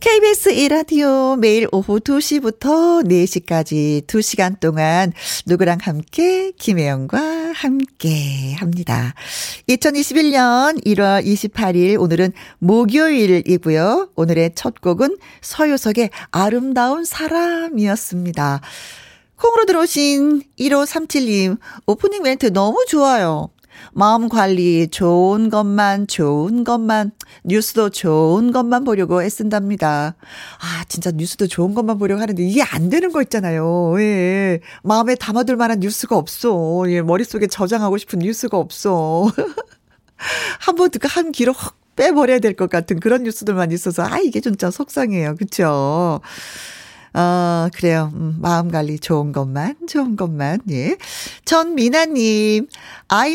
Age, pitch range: 50-69, 175-270 Hz